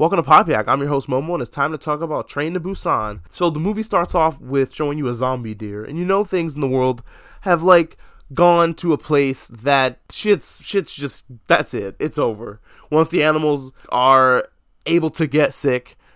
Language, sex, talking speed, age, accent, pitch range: English, male, 210 wpm, 20-39, American, 115-155 Hz